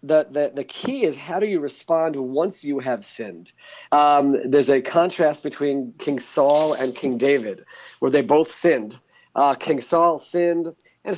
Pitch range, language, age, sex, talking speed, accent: 135-170 Hz, English, 40-59, male, 170 wpm, American